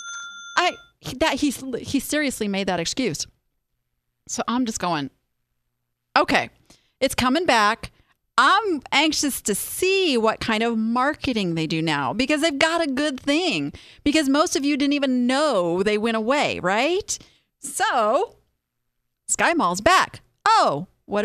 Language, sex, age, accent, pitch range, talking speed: English, female, 40-59, American, 195-315 Hz, 140 wpm